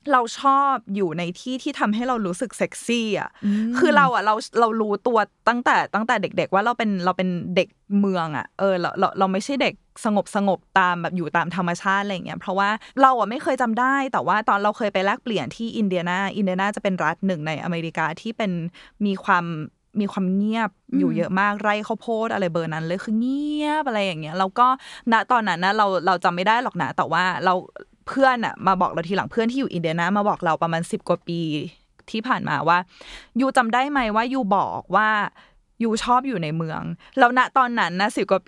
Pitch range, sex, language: 180-230 Hz, female, Thai